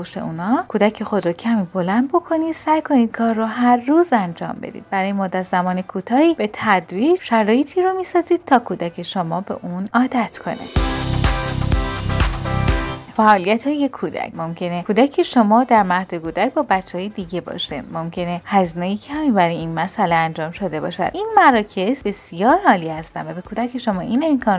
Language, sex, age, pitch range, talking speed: Persian, female, 30-49, 180-275 Hz, 160 wpm